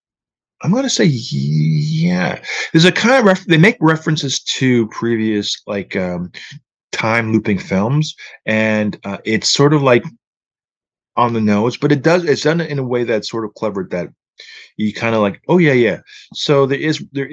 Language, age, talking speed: English, 30-49, 180 wpm